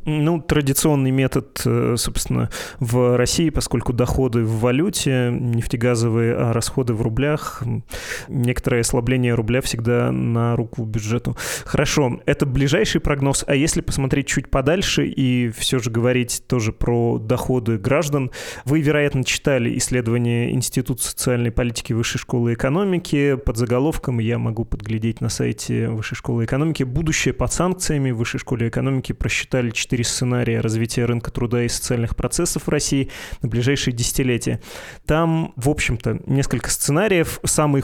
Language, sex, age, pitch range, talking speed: Russian, male, 20-39, 120-140 Hz, 135 wpm